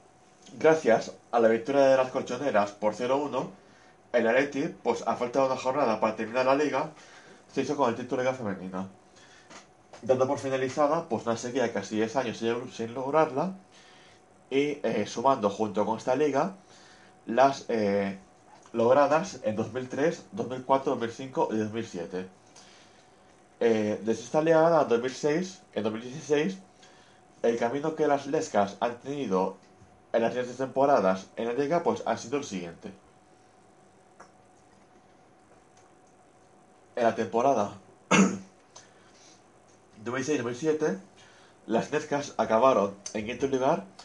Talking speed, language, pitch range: 125 wpm, Spanish, 110-140 Hz